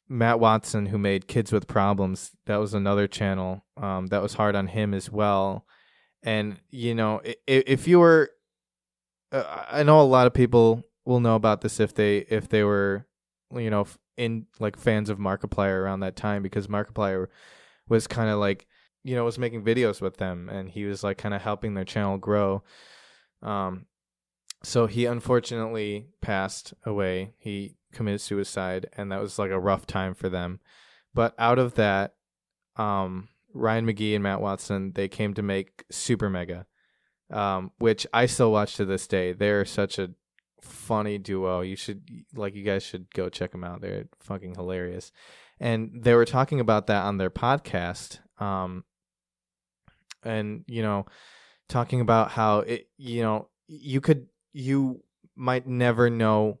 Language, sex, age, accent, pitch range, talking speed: English, male, 20-39, American, 95-115 Hz, 170 wpm